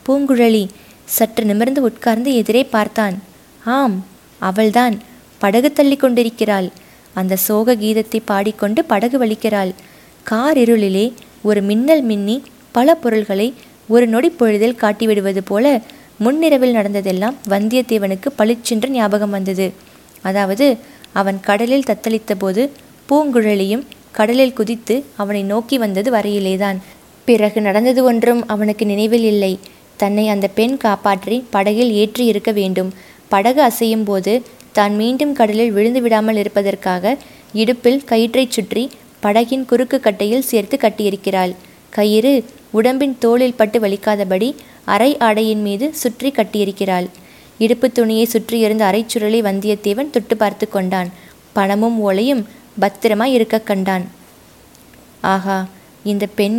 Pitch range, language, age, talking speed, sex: 205-240 Hz, Tamil, 20-39, 110 wpm, female